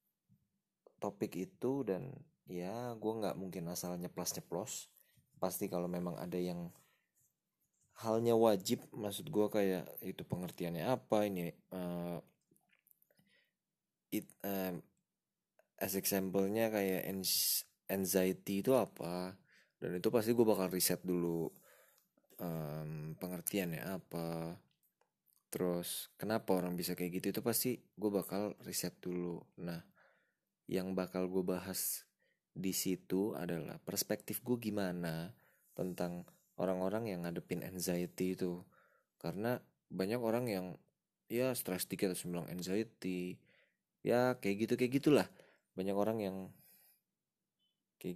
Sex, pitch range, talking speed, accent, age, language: male, 90-105 Hz, 110 wpm, native, 20-39, Indonesian